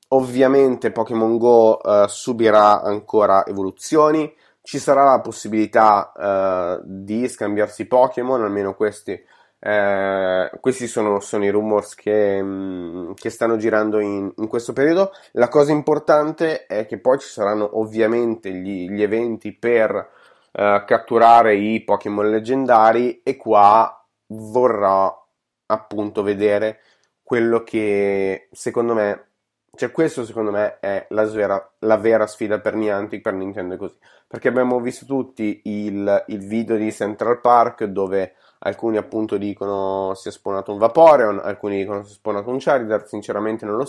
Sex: male